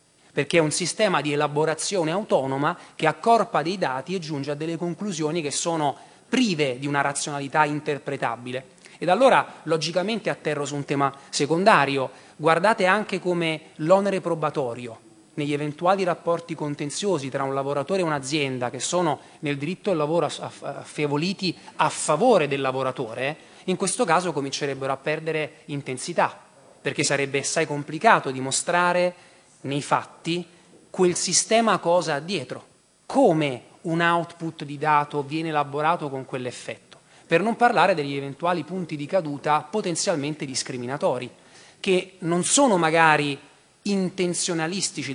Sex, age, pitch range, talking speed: male, 30-49, 145-180 Hz, 130 wpm